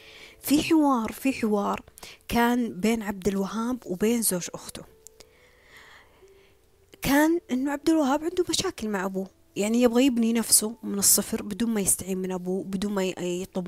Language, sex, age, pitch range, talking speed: Arabic, female, 20-39, 185-235 Hz, 145 wpm